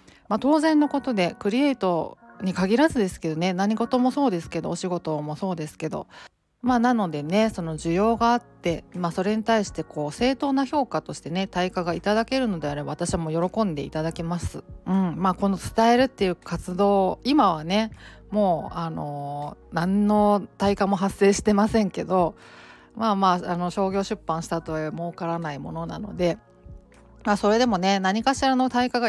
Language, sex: Japanese, female